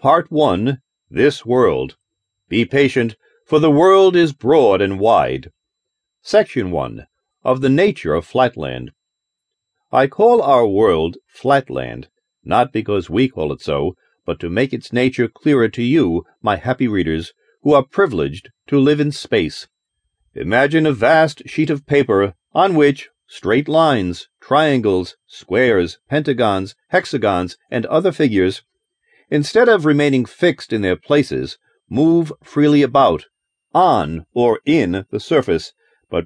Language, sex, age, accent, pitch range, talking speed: English, male, 40-59, American, 110-160 Hz, 135 wpm